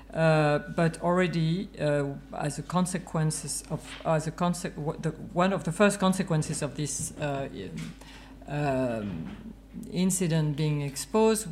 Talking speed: 130 wpm